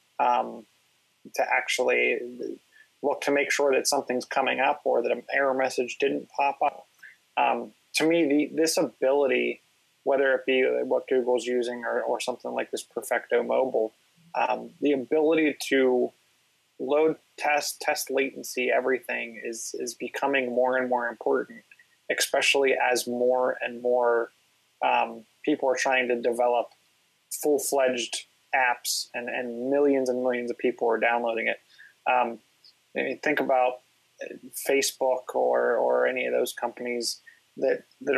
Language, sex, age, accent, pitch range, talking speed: English, male, 20-39, American, 125-145 Hz, 140 wpm